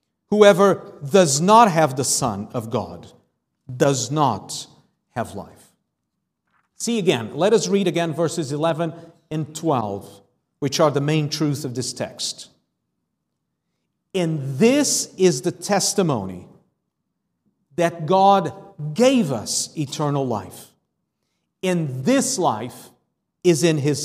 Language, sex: English, male